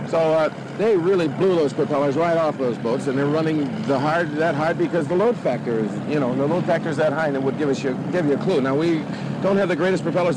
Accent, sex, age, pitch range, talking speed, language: American, male, 60-79, 145-180 Hz, 280 wpm, English